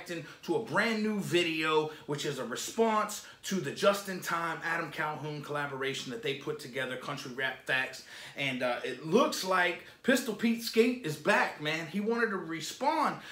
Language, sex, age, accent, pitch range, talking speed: English, male, 30-49, American, 155-220 Hz, 175 wpm